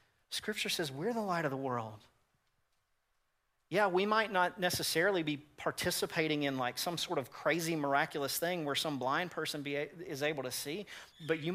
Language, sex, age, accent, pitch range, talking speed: English, male, 40-59, American, 135-170 Hz, 170 wpm